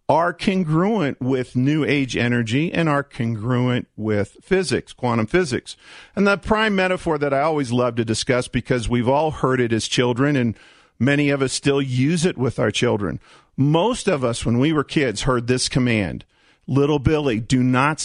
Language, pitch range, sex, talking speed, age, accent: English, 125-165 Hz, male, 180 wpm, 50-69, American